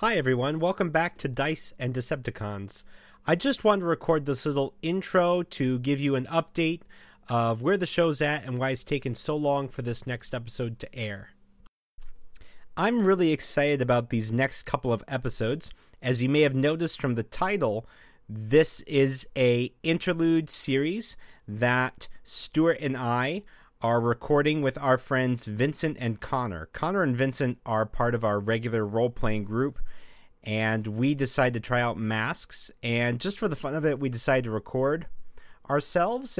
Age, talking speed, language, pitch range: 30-49, 165 wpm, English, 115-150 Hz